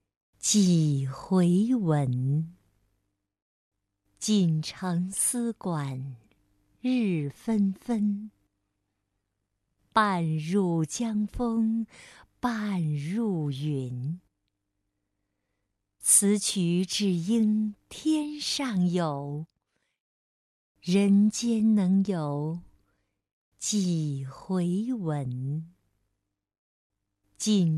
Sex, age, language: female, 50-69, Chinese